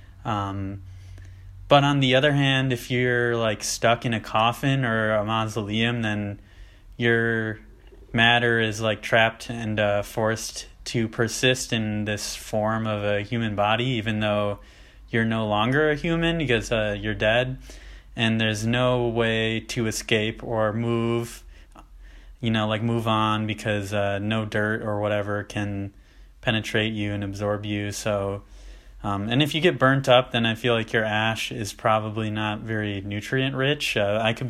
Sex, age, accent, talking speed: male, 20-39, American, 160 wpm